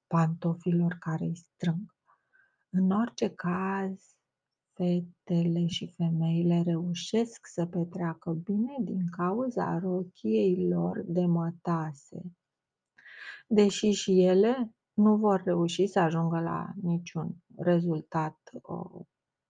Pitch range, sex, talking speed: 170-190 Hz, female, 90 wpm